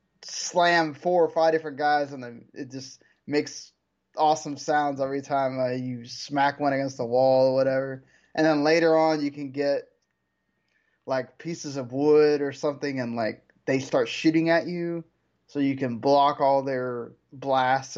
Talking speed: 170 wpm